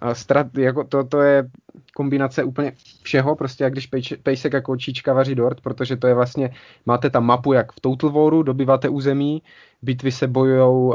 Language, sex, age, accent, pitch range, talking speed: Czech, male, 20-39, native, 120-135 Hz, 180 wpm